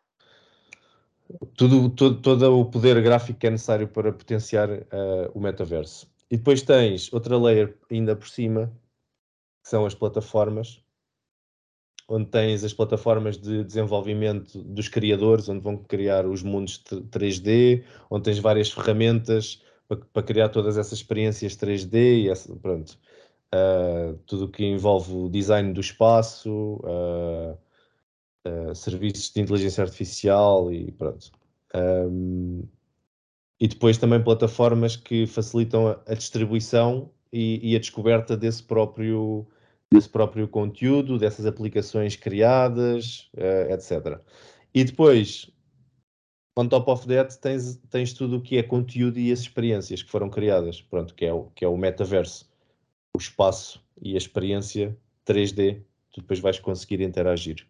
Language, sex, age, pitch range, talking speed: Portuguese, male, 20-39, 100-115 Hz, 125 wpm